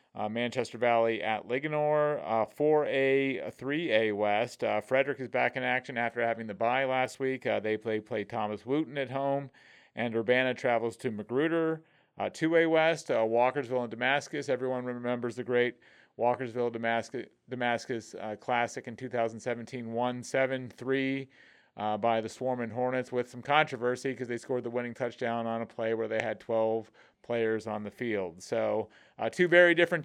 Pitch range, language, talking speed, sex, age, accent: 115-135 Hz, English, 165 wpm, male, 40-59, American